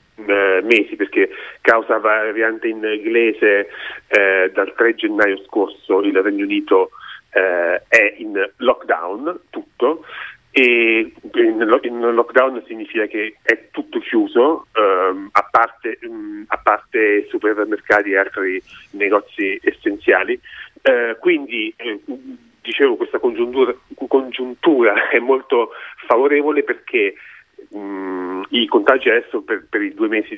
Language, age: Italian, 30-49